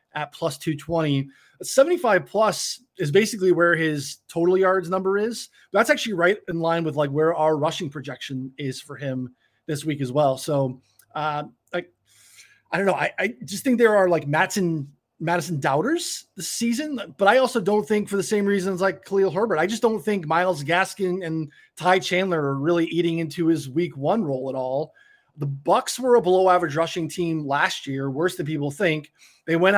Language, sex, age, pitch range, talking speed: English, male, 20-39, 150-190 Hz, 195 wpm